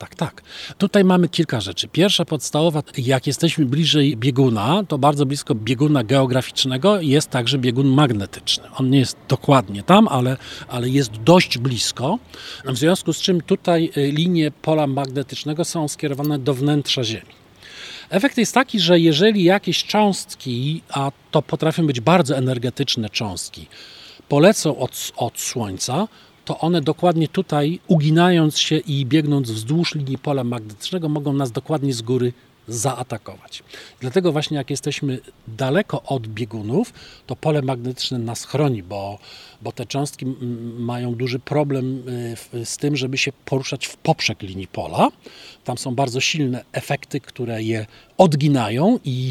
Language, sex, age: Polish, male, 40-59